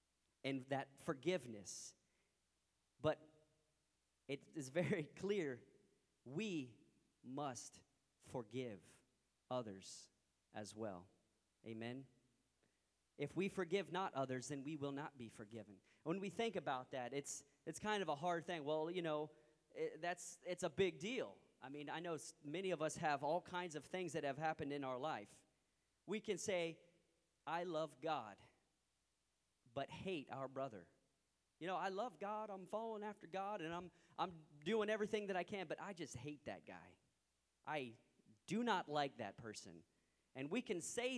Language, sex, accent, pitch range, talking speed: English, male, American, 135-180 Hz, 155 wpm